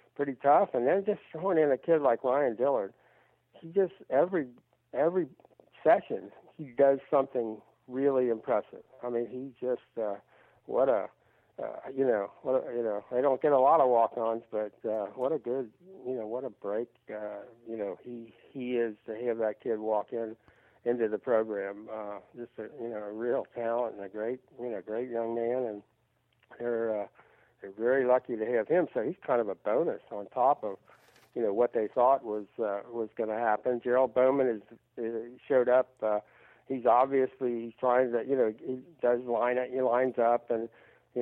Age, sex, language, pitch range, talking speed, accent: 60-79, male, English, 110-125 Hz, 195 wpm, American